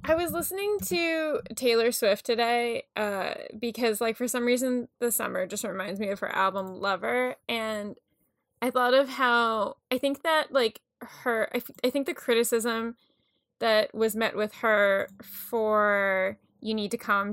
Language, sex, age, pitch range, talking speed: English, female, 10-29, 205-250 Hz, 165 wpm